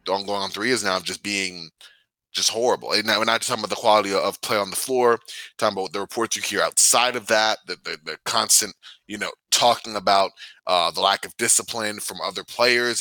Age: 20-39